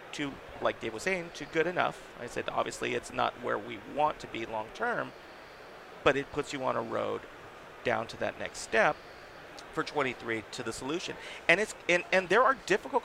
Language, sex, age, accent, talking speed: English, male, 40-59, American, 200 wpm